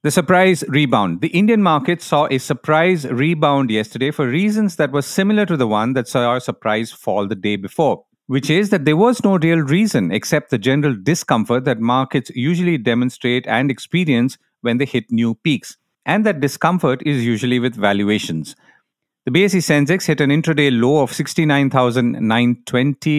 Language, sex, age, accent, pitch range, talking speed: English, male, 50-69, Indian, 120-160 Hz, 170 wpm